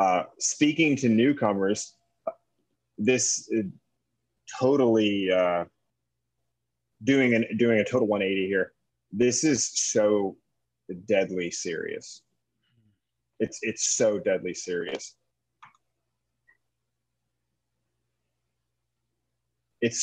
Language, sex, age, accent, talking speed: English, male, 30-49, American, 85 wpm